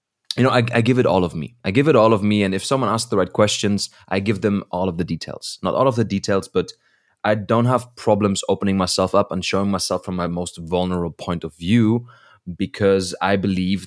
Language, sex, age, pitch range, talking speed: English, male, 20-39, 95-115 Hz, 240 wpm